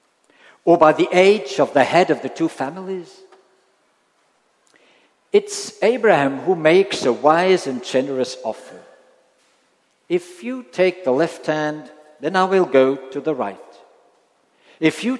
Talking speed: 140 wpm